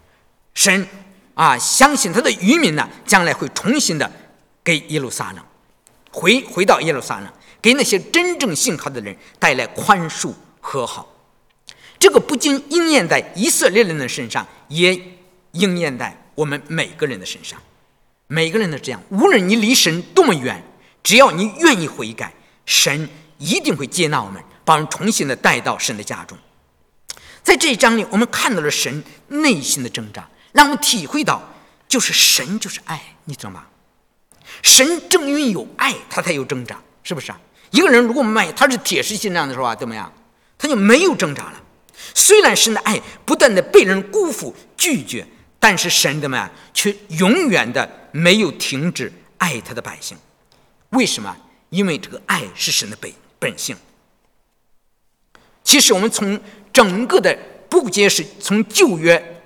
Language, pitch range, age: English, 170-265 Hz, 50-69